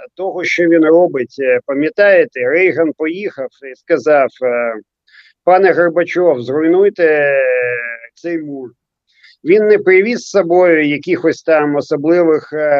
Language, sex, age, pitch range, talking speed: Ukrainian, male, 50-69, 145-195 Hz, 105 wpm